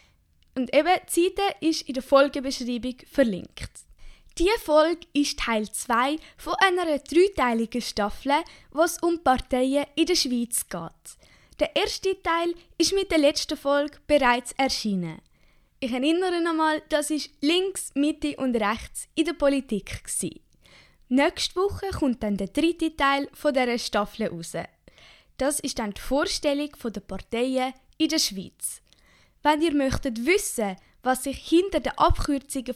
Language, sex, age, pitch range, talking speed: German, female, 10-29, 255-320 Hz, 145 wpm